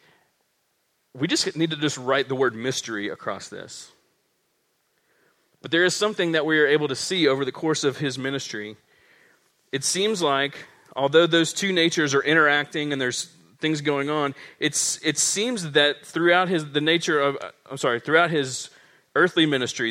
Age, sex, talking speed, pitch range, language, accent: 40-59, male, 170 wpm, 130-160 Hz, English, American